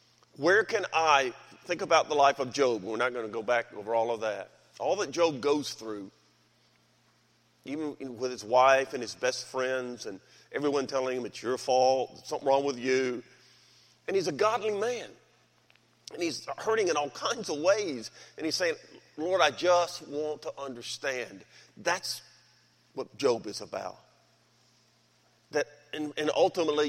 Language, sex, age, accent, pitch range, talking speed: English, male, 40-59, American, 125-160 Hz, 165 wpm